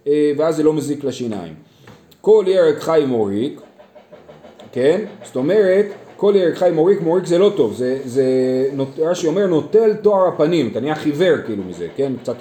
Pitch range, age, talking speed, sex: 130-195 Hz, 30-49, 165 wpm, male